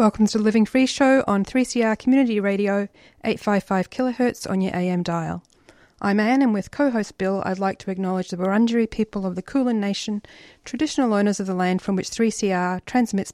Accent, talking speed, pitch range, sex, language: Australian, 190 wpm, 185-220 Hz, female, English